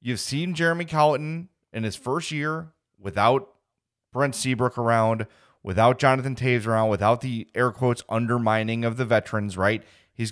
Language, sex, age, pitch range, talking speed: English, male, 30-49, 110-155 Hz, 150 wpm